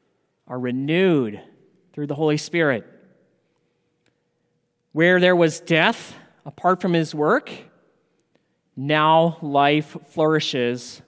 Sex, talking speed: male, 90 wpm